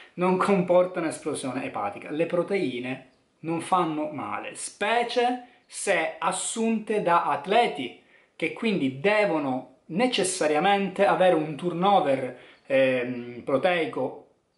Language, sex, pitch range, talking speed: Italian, male, 135-180 Hz, 95 wpm